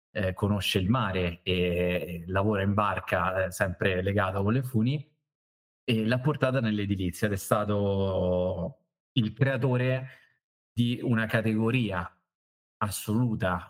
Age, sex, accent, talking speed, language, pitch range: 30-49, male, native, 110 wpm, Italian, 95-110 Hz